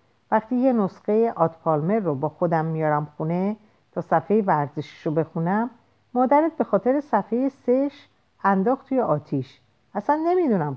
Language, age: Persian, 50-69